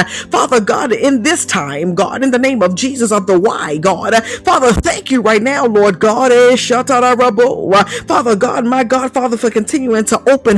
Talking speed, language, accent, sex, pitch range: 175 wpm, English, American, female, 225-270 Hz